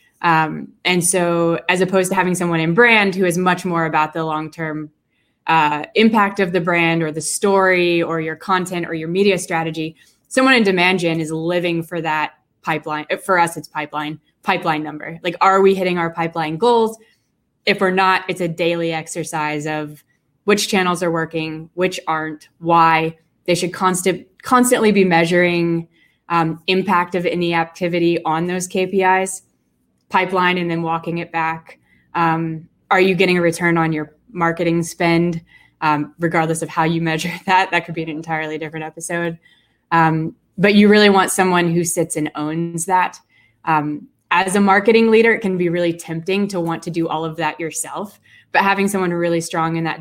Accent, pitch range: American, 160-185 Hz